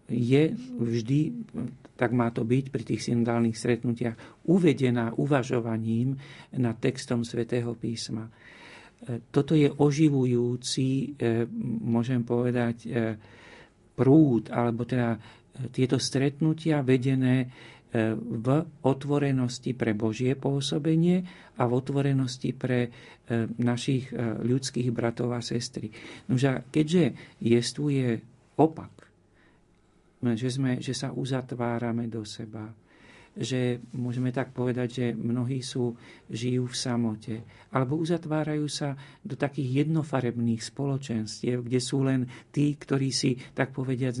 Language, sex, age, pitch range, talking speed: Slovak, male, 50-69, 120-135 Hz, 105 wpm